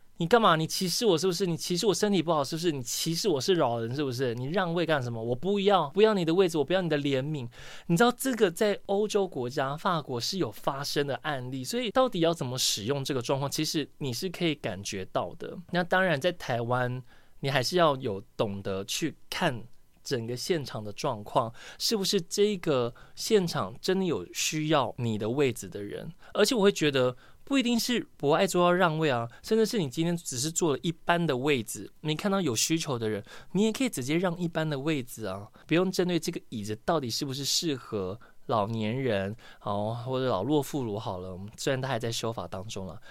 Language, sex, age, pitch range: Chinese, male, 20-39, 120-175 Hz